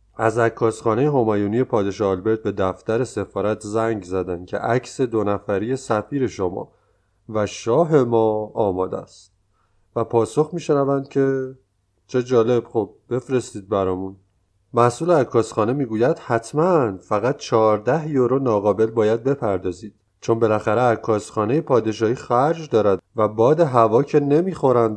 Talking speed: 125 wpm